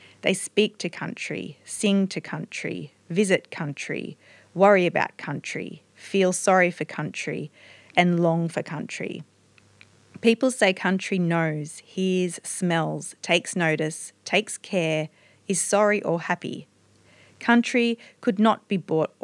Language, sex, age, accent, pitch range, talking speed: English, female, 40-59, Australian, 160-195 Hz, 120 wpm